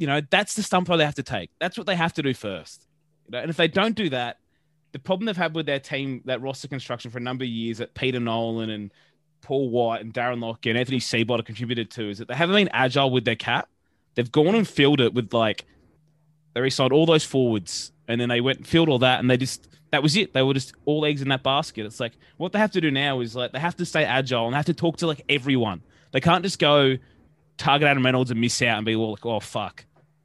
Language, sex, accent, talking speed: English, male, Australian, 270 wpm